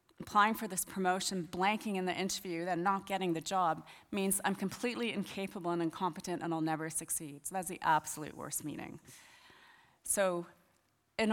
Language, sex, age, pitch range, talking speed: English, female, 30-49, 175-220 Hz, 165 wpm